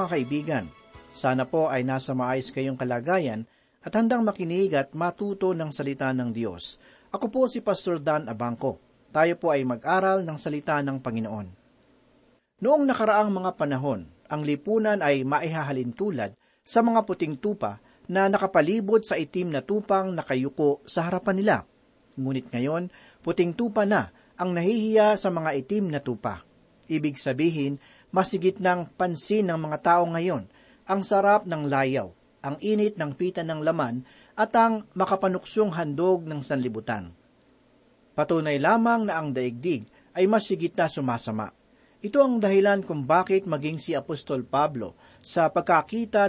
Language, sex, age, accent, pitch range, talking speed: Filipino, male, 40-59, native, 135-200 Hz, 145 wpm